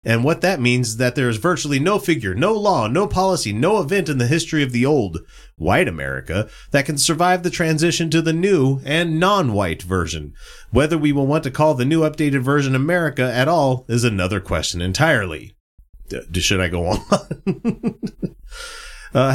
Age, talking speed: 30-49, 185 wpm